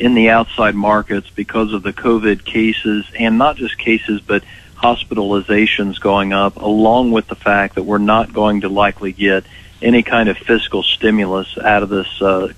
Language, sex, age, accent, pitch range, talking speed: English, male, 40-59, American, 100-110 Hz, 175 wpm